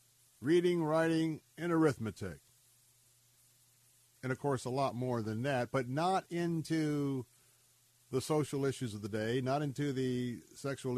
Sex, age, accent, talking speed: male, 50-69, American, 135 wpm